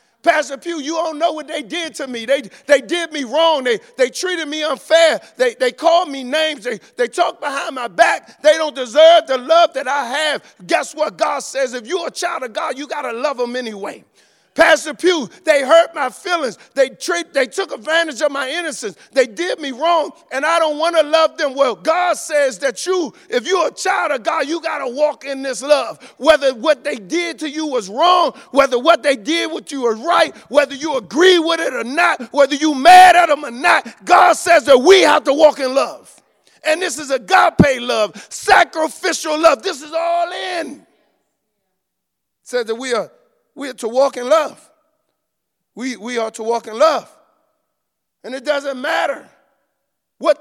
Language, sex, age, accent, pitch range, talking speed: English, male, 50-69, American, 265-330 Hz, 205 wpm